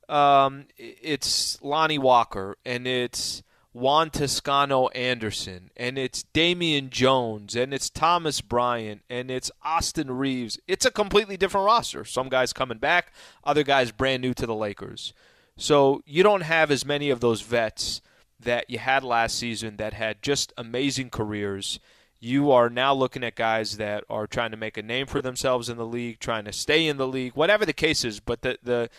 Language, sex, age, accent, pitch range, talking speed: English, male, 20-39, American, 115-155 Hz, 180 wpm